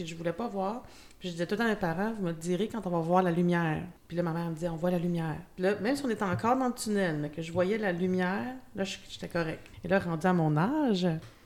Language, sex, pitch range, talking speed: French, female, 170-200 Hz, 300 wpm